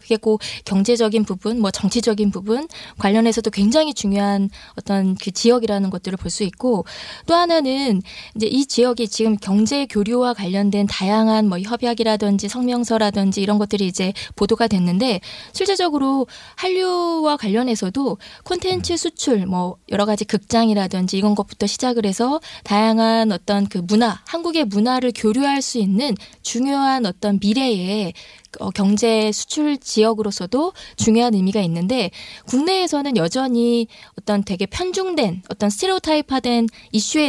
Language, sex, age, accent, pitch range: Korean, female, 20-39, native, 200-245 Hz